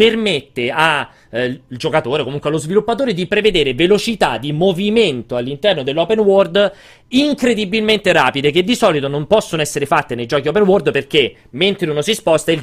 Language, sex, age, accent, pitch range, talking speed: Italian, male, 30-49, native, 125-165 Hz, 160 wpm